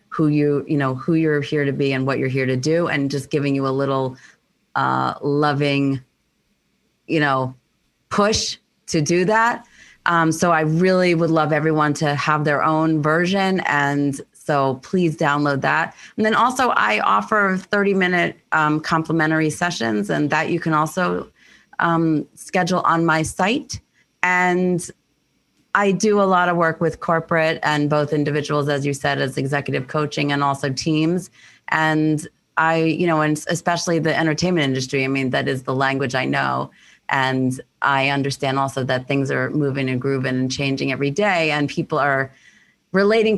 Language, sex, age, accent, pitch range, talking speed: English, female, 30-49, American, 140-165 Hz, 170 wpm